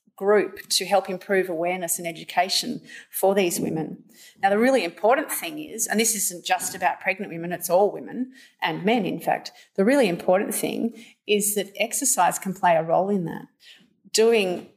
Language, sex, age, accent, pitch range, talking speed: English, female, 30-49, Australian, 180-230 Hz, 180 wpm